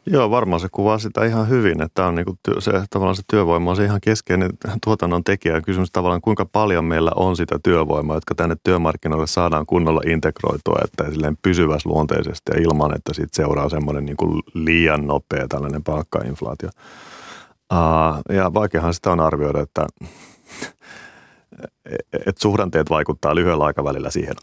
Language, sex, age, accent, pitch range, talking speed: Finnish, male, 30-49, native, 80-100 Hz, 145 wpm